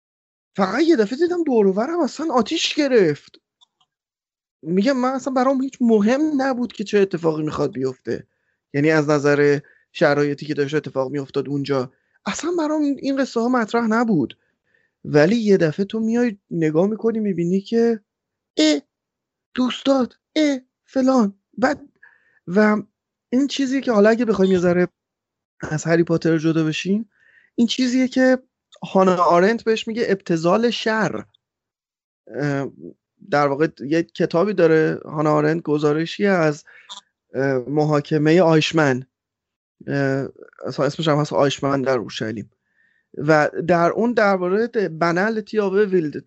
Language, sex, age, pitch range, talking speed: Persian, male, 30-49, 150-230 Hz, 125 wpm